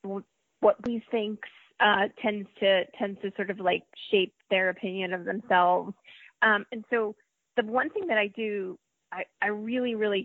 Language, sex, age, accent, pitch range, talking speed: English, female, 30-49, American, 185-225 Hz, 170 wpm